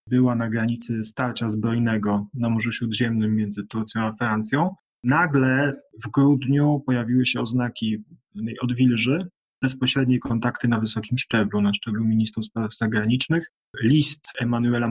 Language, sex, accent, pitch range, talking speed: Polish, male, native, 110-125 Hz, 125 wpm